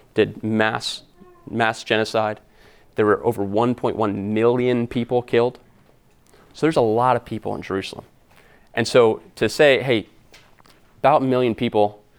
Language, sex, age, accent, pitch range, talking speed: English, male, 20-39, American, 110-130 Hz, 140 wpm